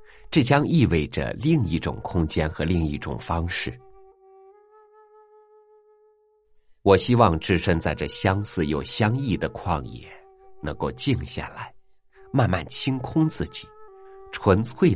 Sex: male